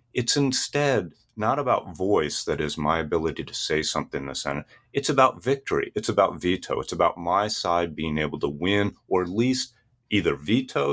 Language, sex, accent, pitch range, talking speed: English, male, American, 85-120 Hz, 185 wpm